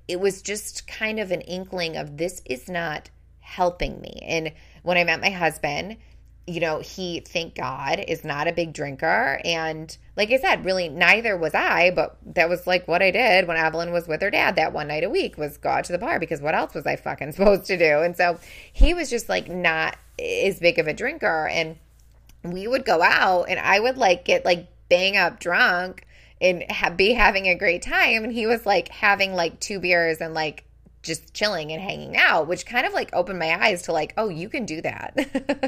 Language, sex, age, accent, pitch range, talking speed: English, female, 20-39, American, 165-215 Hz, 220 wpm